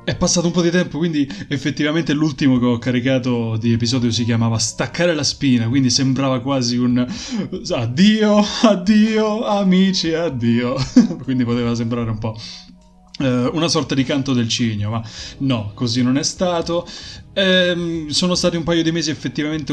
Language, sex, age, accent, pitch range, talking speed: Italian, male, 20-39, native, 115-155 Hz, 160 wpm